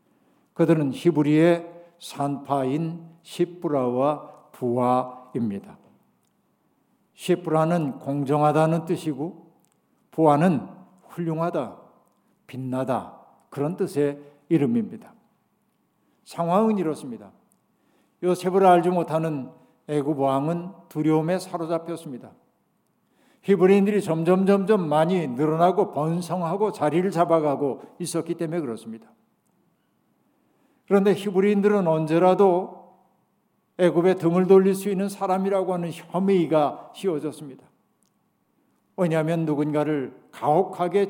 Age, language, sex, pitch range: 60-79, Korean, male, 155-190 Hz